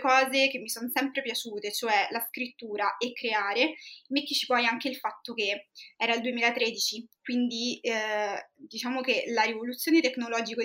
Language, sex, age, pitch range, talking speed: Italian, female, 20-39, 220-270 Hz, 150 wpm